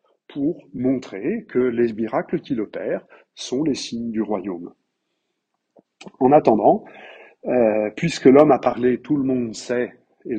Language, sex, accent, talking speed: French, male, French, 140 wpm